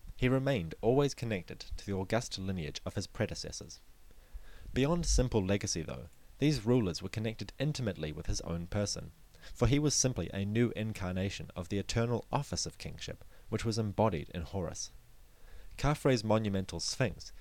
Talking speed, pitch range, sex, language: 155 wpm, 90-115 Hz, male, English